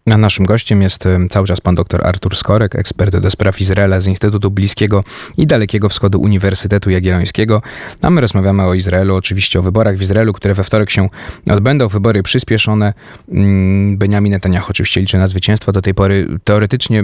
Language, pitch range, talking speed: Polish, 100-130 Hz, 170 wpm